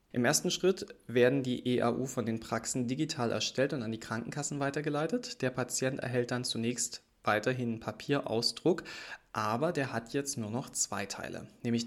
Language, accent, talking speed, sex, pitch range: German, German, 160 wpm, male, 110-130 Hz